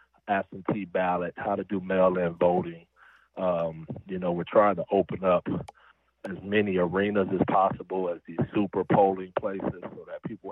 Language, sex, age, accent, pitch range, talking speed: English, male, 40-59, American, 90-100 Hz, 165 wpm